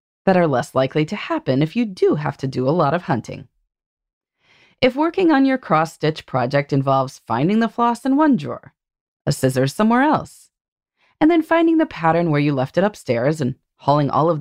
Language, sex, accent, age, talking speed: English, female, American, 30-49, 195 wpm